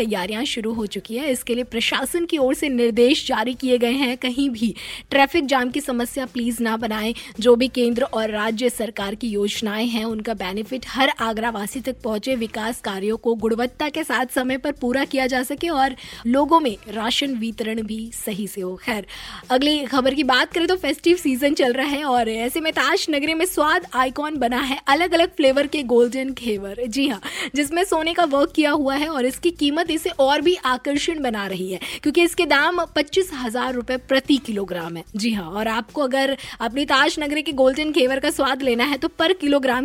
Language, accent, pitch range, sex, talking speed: Hindi, native, 230-295 Hz, female, 200 wpm